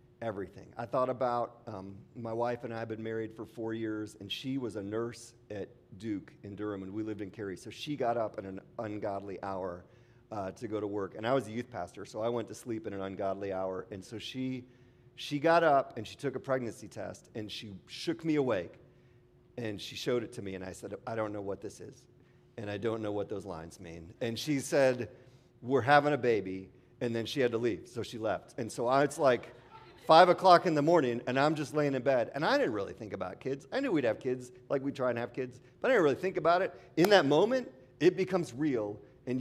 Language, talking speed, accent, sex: English, 245 wpm, American, male